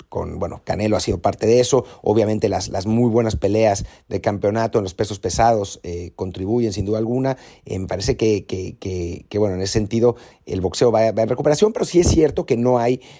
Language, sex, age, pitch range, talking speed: Spanish, male, 40-59, 100-135 Hz, 210 wpm